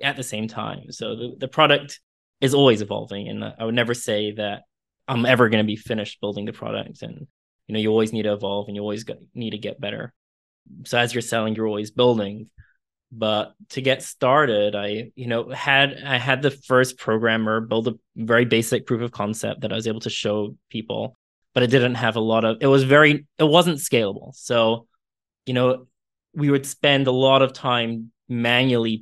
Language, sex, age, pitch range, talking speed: English, male, 20-39, 110-130 Hz, 205 wpm